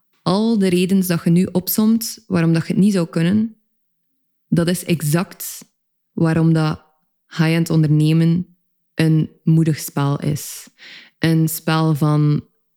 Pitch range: 155-180 Hz